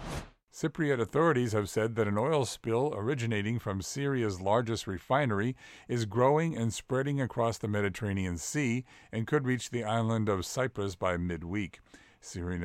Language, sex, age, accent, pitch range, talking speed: English, male, 50-69, American, 95-120 Hz, 145 wpm